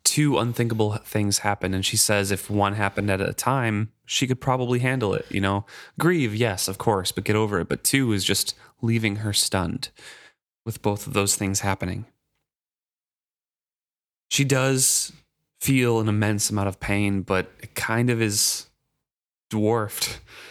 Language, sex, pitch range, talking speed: English, male, 100-120 Hz, 160 wpm